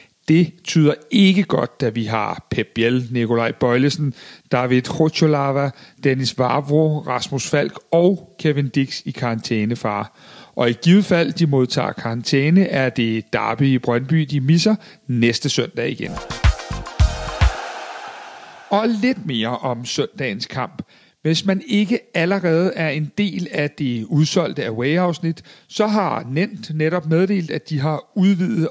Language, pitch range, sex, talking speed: Danish, 130-180 Hz, male, 135 wpm